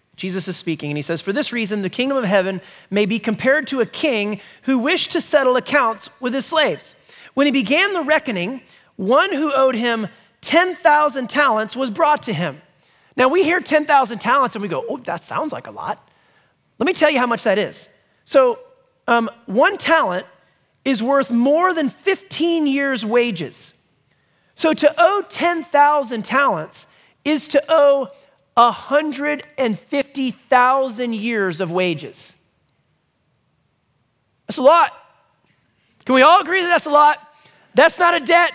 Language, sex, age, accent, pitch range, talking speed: English, male, 30-49, American, 225-300 Hz, 160 wpm